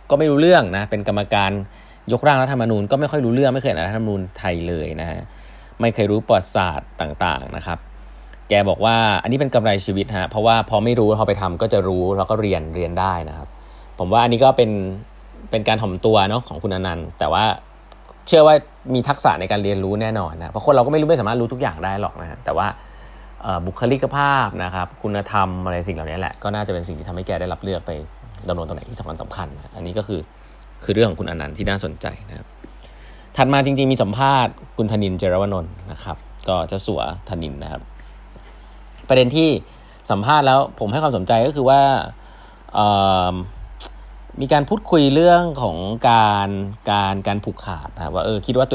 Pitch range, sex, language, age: 90-120 Hz, male, Thai, 20-39